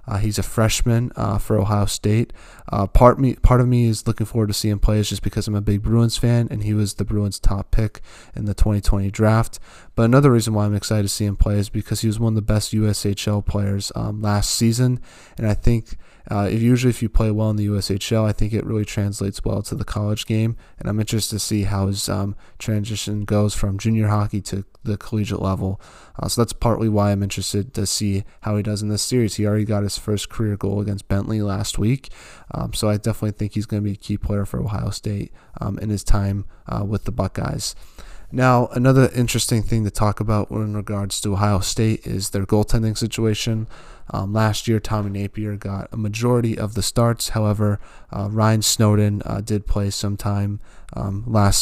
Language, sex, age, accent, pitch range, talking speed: English, male, 20-39, American, 100-110 Hz, 220 wpm